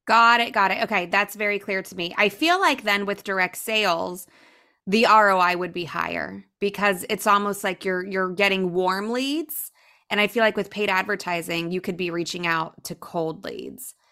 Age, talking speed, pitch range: 20-39, 195 wpm, 190-240 Hz